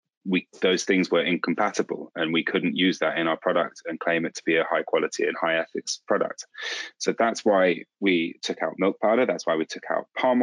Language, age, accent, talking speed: English, 20-39, British, 225 wpm